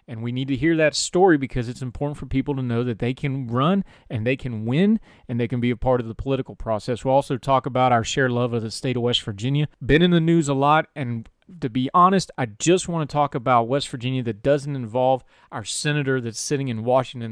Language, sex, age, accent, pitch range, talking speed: English, male, 30-49, American, 120-145 Hz, 250 wpm